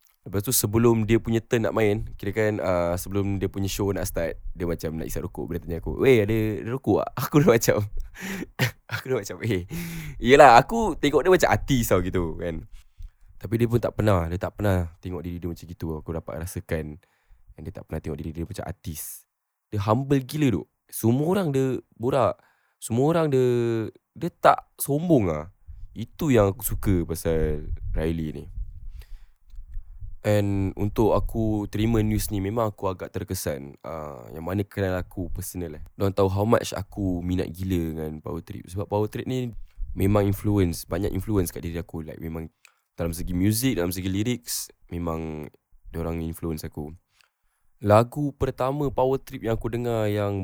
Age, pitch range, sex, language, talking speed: 10-29, 85-110 Hz, male, Malay, 185 wpm